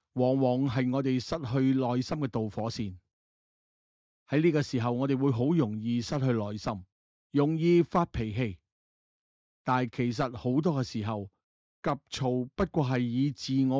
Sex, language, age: male, Chinese, 30-49